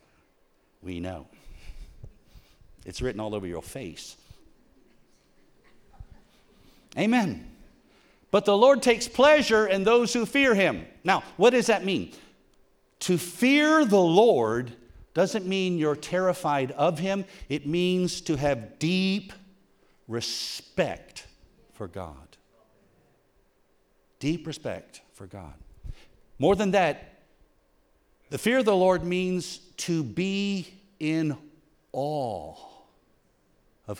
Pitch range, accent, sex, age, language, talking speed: 110-175 Hz, American, male, 50-69, English, 105 wpm